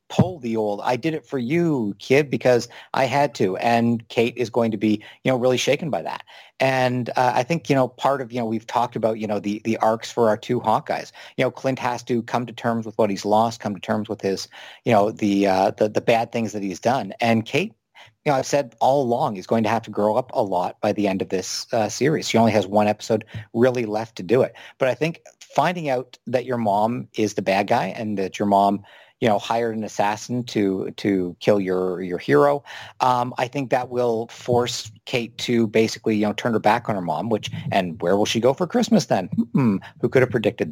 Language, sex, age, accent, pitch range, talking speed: English, male, 50-69, American, 110-135 Hz, 250 wpm